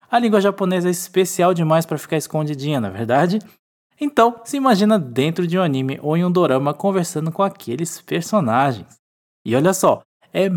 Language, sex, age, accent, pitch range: Japanese, male, 20-39, Brazilian, 150-210 Hz